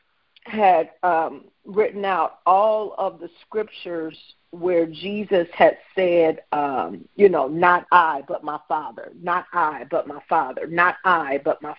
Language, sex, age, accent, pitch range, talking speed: English, female, 50-69, American, 185-235 Hz, 150 wpm